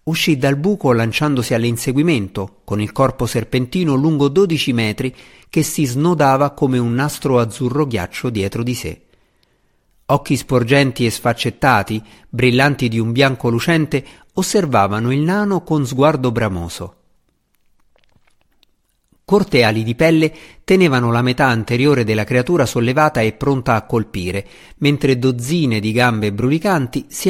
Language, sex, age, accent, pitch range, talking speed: Italian, male, 50-69, native, 110-145 Hz, 130 wpm